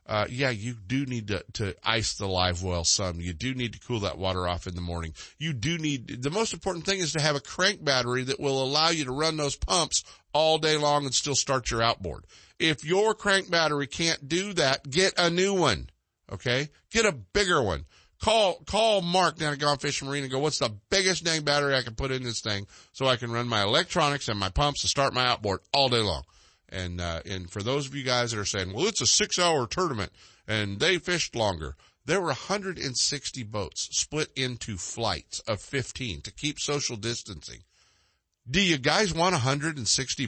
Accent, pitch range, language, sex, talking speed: American, 100-150 Hz, English, male, 215 wpm